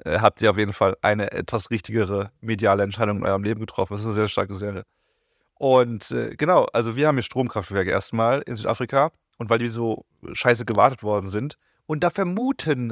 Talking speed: 200 wpm